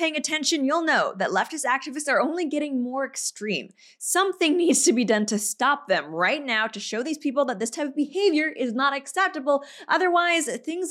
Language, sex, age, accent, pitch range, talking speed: English, female, 20-39, American, 230-315 Hz, 200 wpm